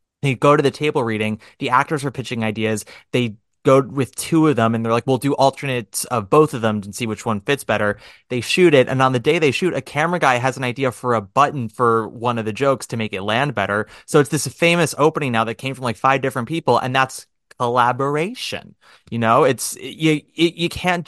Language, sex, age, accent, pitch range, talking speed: English, male, 30-49, American, 110-135 Hz, 235 wpm